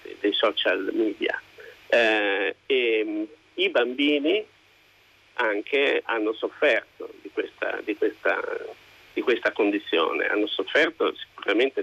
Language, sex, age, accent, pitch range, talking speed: Italian, male, 50-69, native, 320-450 Hz, 105 wpm